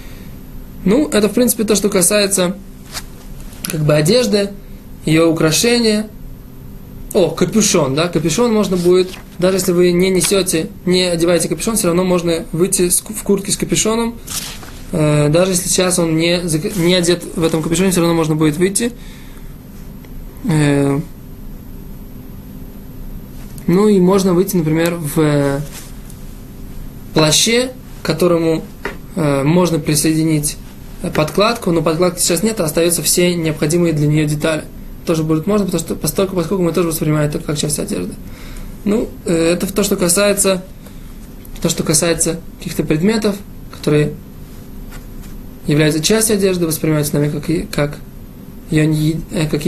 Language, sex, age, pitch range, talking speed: Russian, male, 20-39, 155-190 Hz, 125 wpm